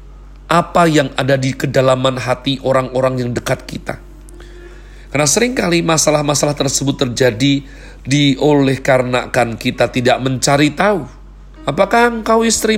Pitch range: 130-175 Hz